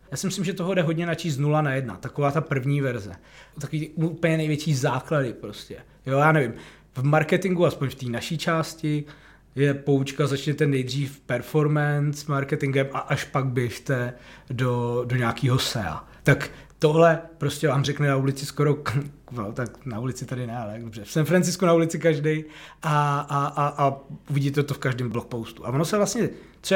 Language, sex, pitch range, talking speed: Czech, male, 135-165 Hz, 180 wpm